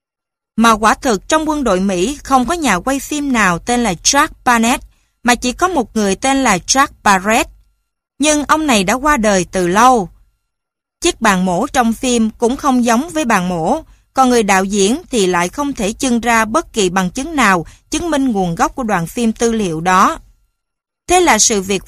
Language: Vietnamese